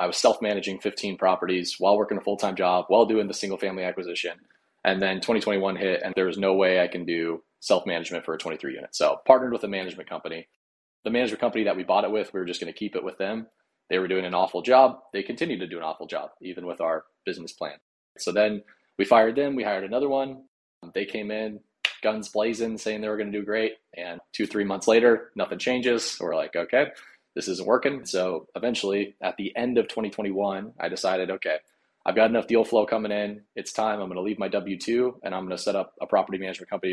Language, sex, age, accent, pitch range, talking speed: English, male, 20-39, American, 95-110 Hz, 230 wpm